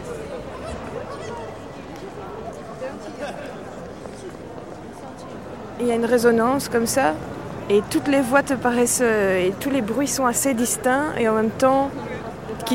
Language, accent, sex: French, French, female